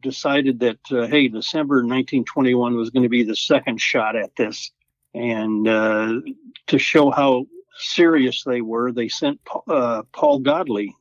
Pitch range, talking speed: 120-170 Hz, 155 wpm